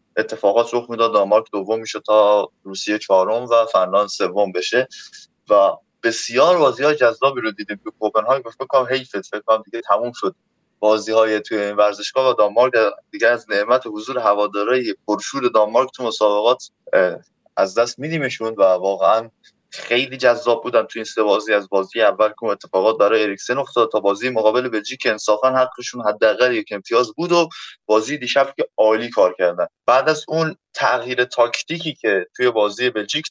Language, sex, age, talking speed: Persian, male, 20-39, 160 wpm